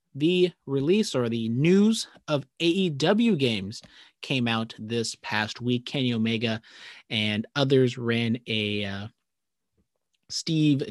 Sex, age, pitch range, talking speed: male, 30-49, 115-150 Hz, 115 wpm